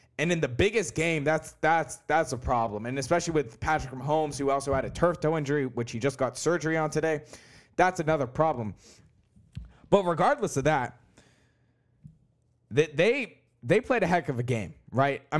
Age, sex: 20-39, male